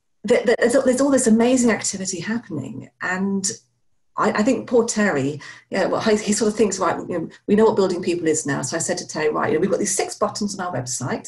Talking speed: 235 wpm